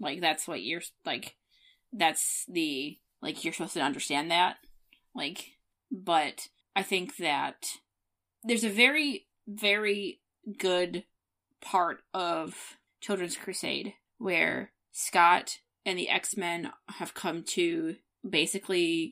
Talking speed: 115 wpm